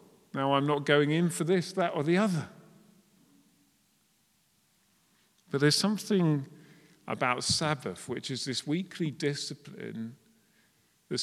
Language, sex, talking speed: English, male, 120 wpm